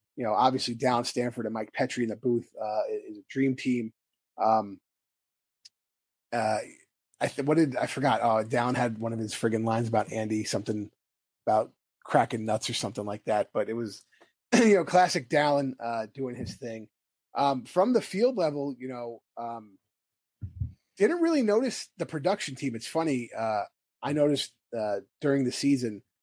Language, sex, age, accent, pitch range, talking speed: English, male, 30-49, American, 110-140 Hz, 175 wpm